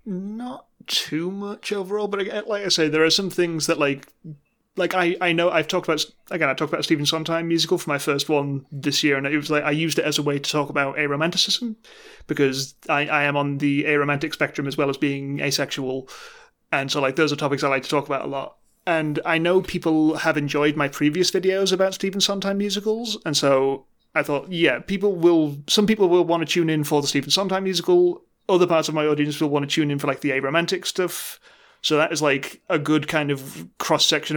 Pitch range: 145-180 Hz